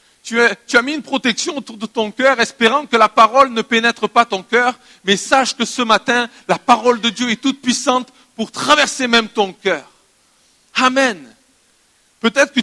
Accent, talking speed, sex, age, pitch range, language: French, 185 wpm, male, 50-69, 180-235 Hz, French